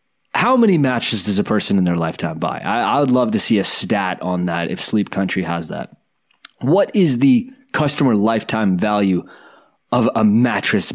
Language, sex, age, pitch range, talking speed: English, male, 20-39, 95-150 Hz, 185 wpm